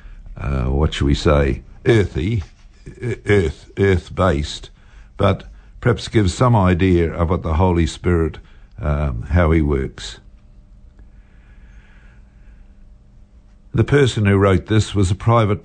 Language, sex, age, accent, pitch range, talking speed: English, male, 60-79, Australian, 80-105 Hz, 115 wpm